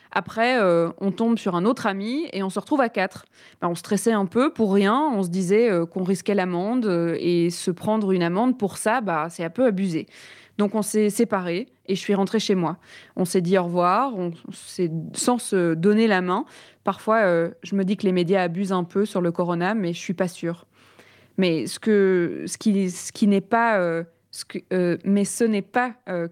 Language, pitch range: French, 175-210 Hz